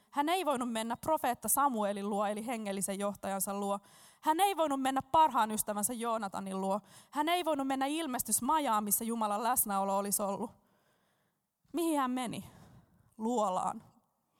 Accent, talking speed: native, 140 wpm